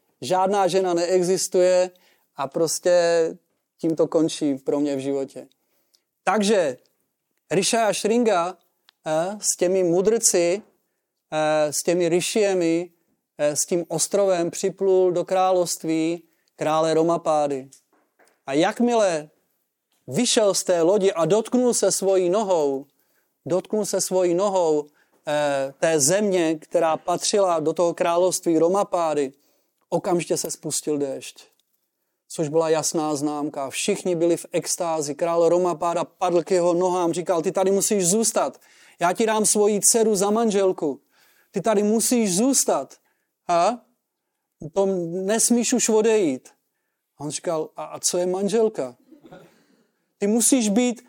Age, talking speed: 30-49, 125 wpm